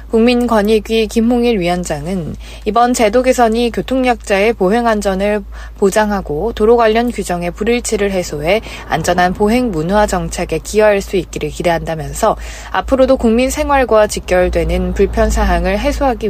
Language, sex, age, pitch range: Korean, female, 20-39, 180-230 Hz